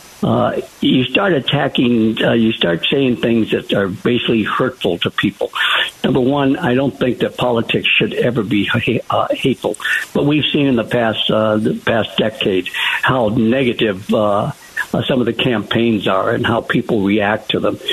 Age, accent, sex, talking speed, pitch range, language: 60-79, American, male, 175 wpm, 110-135 Hz, English